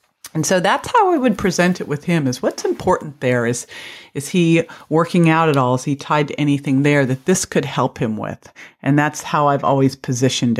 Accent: American